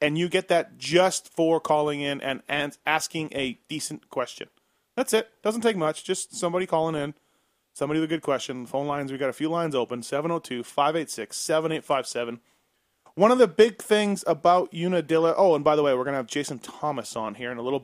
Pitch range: 135-175 Hz